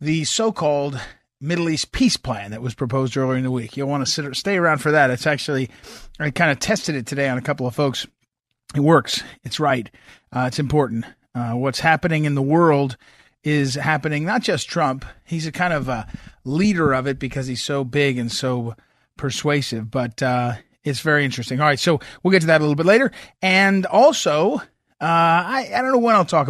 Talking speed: 215 wpm